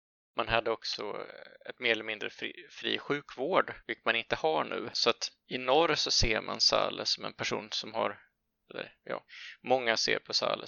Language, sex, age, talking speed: Swedish, male, 20-39, 190 wpm